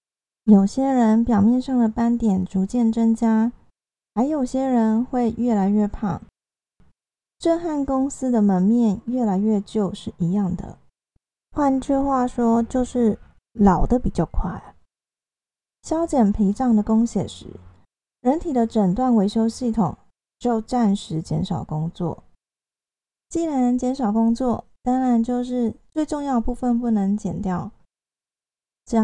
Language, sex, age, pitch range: Chinese, female, 20-39, 205-255 Hz